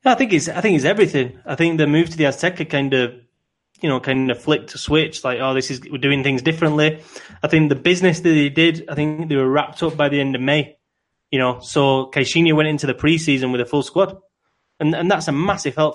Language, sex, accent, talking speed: English, male, British, 250 wpm